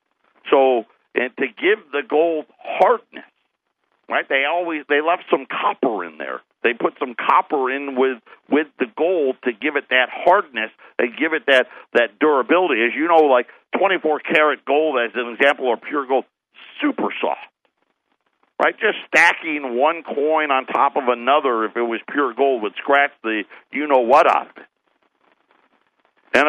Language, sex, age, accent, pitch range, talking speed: English, male, 50-69, American, 150-200 Hz, 160 wpm